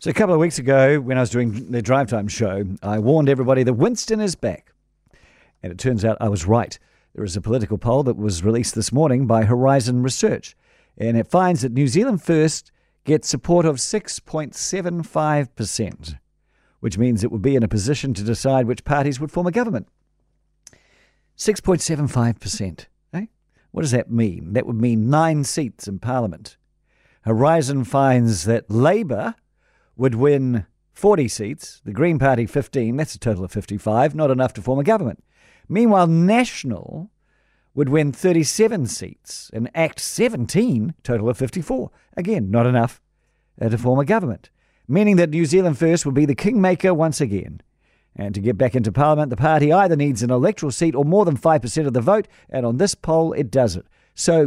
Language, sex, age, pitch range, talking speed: English, male, 50-69, 115-165 Hz, 175 wpm